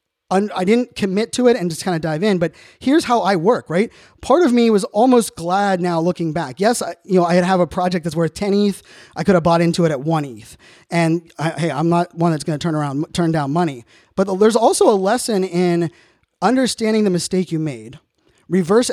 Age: 20-39